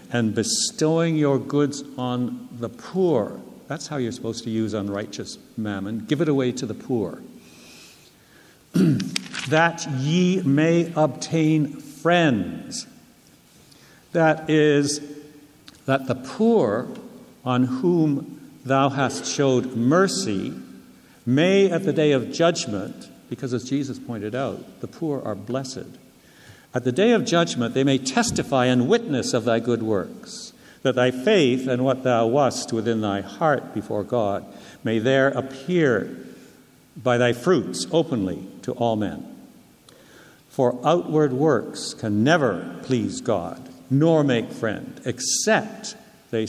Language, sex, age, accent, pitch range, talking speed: English, male, 60-79, American, 125-165 Hz, 130 wpm